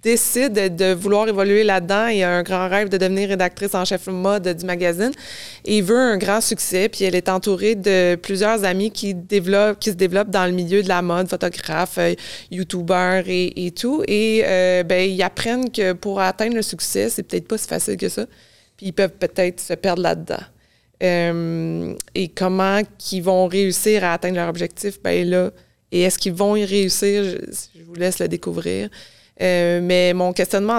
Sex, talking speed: female, 195 wpm